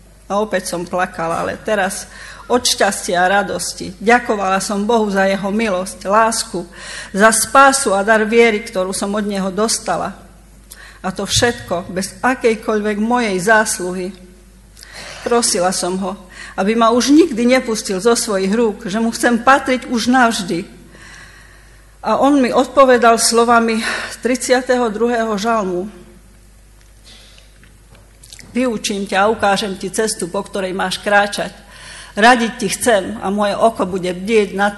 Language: Slovak